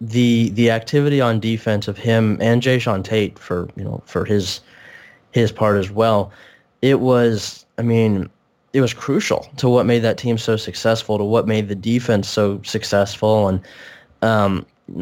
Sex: male